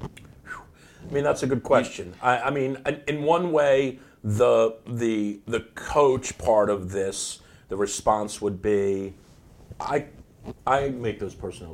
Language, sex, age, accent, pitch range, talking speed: English, male, 50-69, American, 105-140 Hz, 145 wpm